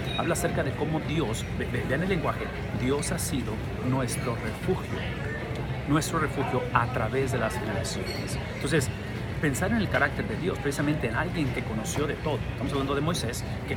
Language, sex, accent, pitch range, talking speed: English, male, Mexican, 120-150 Hz, 170 wpm